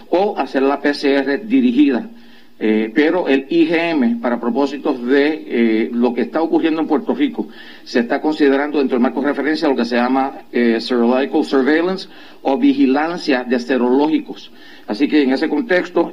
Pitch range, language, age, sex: 120-150 Hz, Spanish, 50-69, male